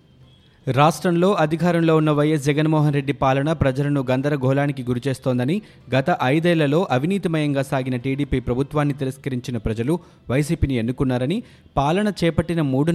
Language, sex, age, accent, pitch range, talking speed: Telugu, male, 30-49, native, 130-155 Hz, 105 wpm